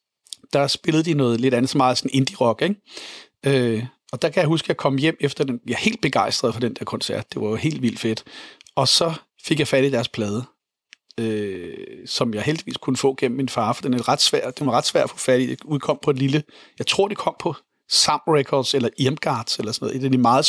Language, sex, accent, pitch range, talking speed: Danish, male, native, 130-160 Hz, 250 wpm